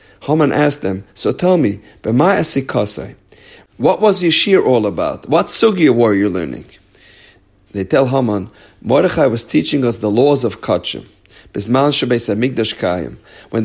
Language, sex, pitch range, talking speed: English, male, 110-150 Hz, 125 wpm